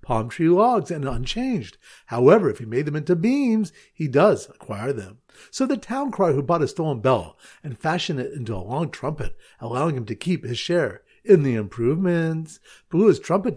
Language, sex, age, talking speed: English, male, 50-69, 195 wpm